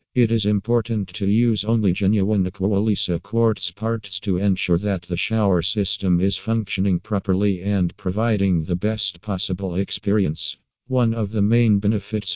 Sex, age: male, 50-69